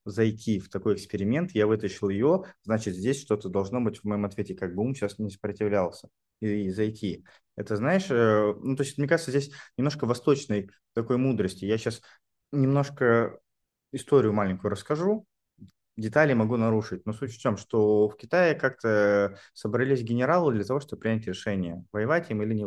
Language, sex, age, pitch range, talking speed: Russian, male, 20-39, 105-135 Hz, 170 wpm